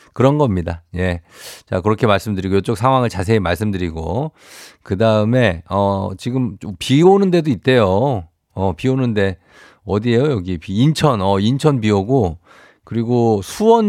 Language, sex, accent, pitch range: Korean, male, native, 100-140 Hz